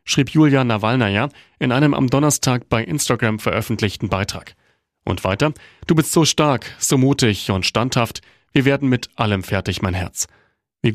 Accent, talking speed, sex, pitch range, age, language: German, 160 wpm, male, 105-140 Hz, 40-59, German